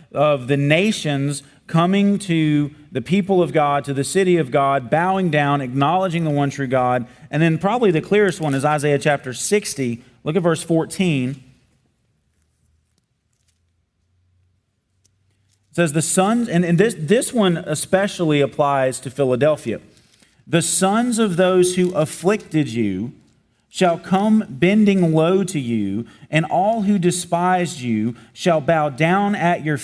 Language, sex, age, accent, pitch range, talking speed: English, male, 40-59, American, 140-185 Hz, 145 wpm